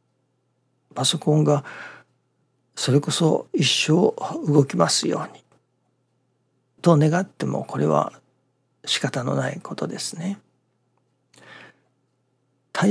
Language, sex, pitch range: Japanese, male, 130-165 Hz